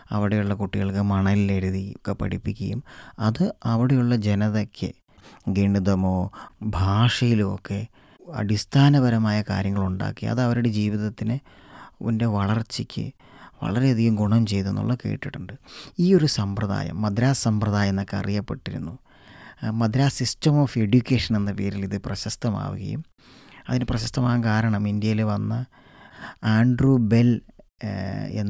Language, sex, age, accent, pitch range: English, male, 20-39, Indian, 100-120 Hz